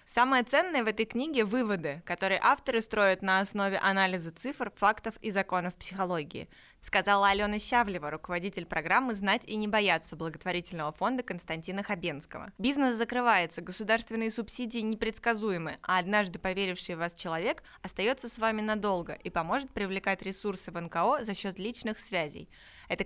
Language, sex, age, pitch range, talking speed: Russian, female, 20-39, 175-225 Hz, 145 wpm